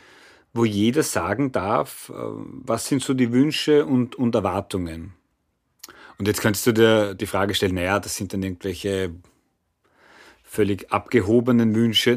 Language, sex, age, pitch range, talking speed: German, male, 30-49, 100-125 Hz, 140 wpm